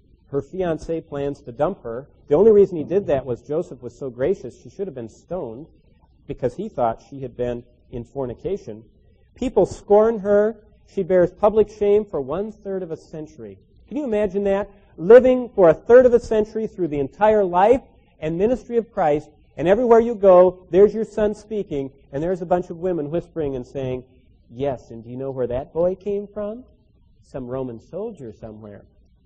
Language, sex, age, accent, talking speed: English, male, 40-59, American, 190 wpm